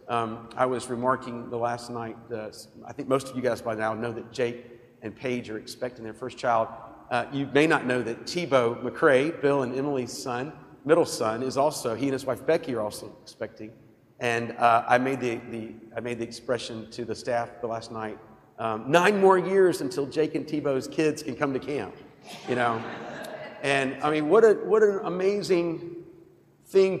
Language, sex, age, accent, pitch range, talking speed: English, male, 50-69, American, 115-155 Hz, 200 wpm